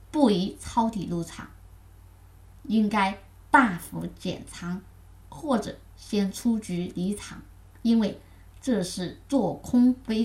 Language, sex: Chinese, female